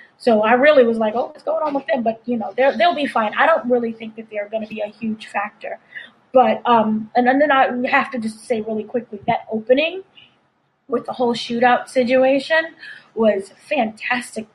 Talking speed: 200 wpm